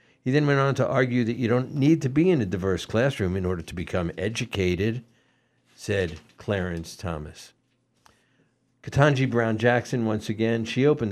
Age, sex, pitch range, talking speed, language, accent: 60-79, male, 95-120 Hz, 160 wpm, English, American